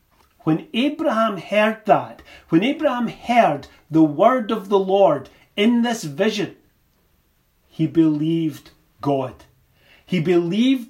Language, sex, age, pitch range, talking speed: English, male, 40-59, 155-200 Hz, 110 wpm